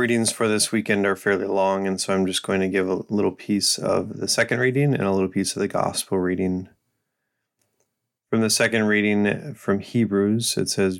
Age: 30-49